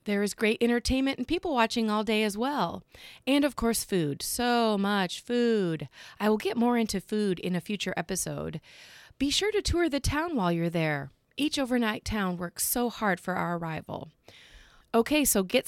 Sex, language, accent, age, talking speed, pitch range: female, English, American, 30-49, 190 wpm, 185-245 Hz